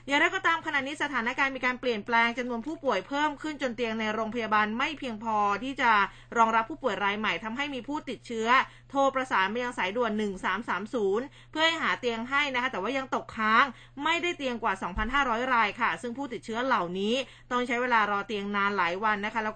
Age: 20-39